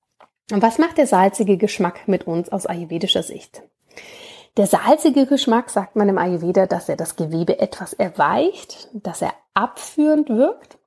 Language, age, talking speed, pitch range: German, 30-49, 155 wpm, 190-240 Hz